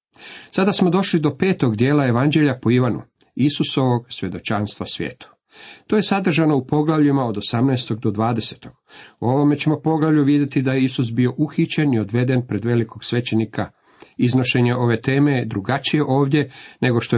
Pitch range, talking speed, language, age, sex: 110-145 Hz, 155 wpm, Croatian, 50-69, male